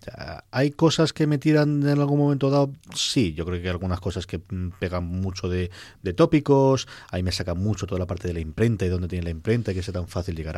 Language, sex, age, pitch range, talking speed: Spanish, male, 30-49, 95-110 Hz, 245 wpm